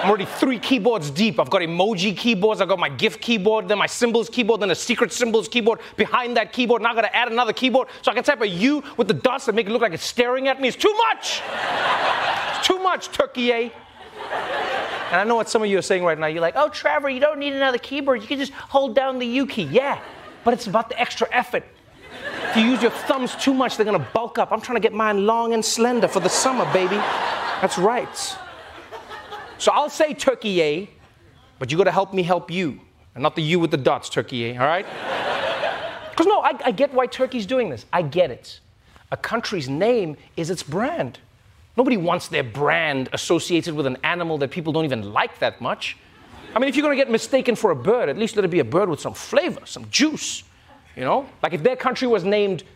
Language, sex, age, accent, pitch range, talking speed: English, male, 30-49, American, 185-260 Hz, 235 wpm